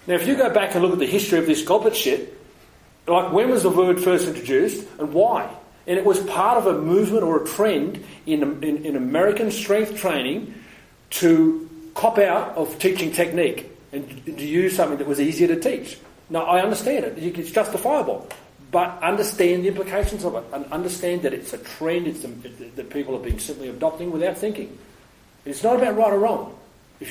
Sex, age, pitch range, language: male, 40-59, 150-215 Hz, English